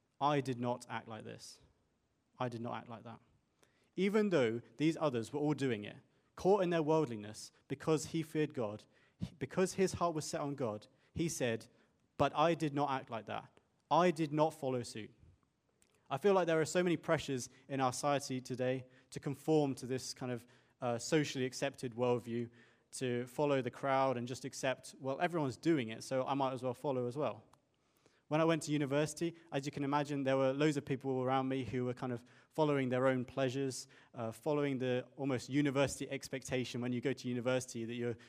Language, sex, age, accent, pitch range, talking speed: English, male, 30-49, British, 125-145 Hz, 200 wpm